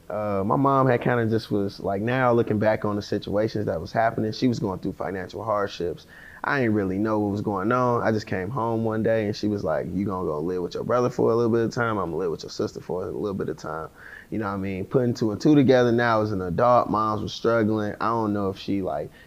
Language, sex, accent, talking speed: English, male, American, 285 wpm